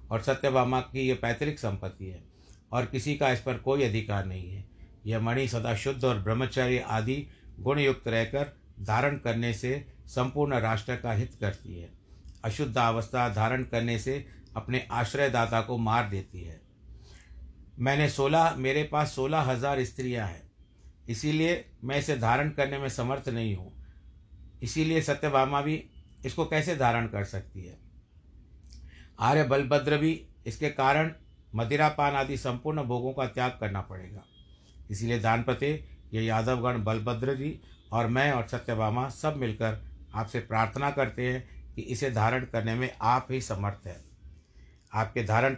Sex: male